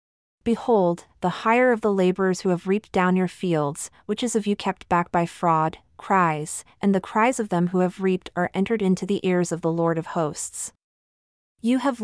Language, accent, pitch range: English, American, 170-215 Hz